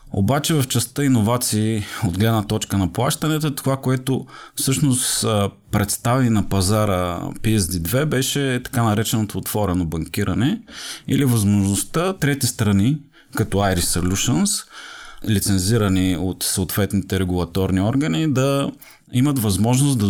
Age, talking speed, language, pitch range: 30-49, 110 wpm, Bulgarian, 100-130 Hz